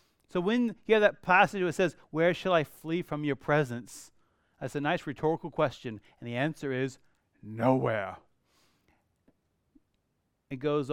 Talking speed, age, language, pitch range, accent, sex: 155 wpm, 30-49, English, 140-185 Hz, American, male